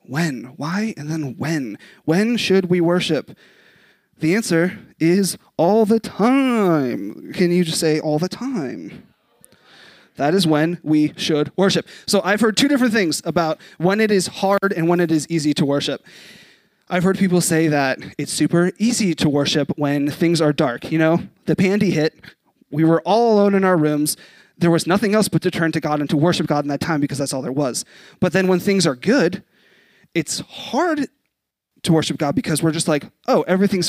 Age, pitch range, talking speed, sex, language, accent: 20-39, 155-205 Hz, 195 wpm, male, English, American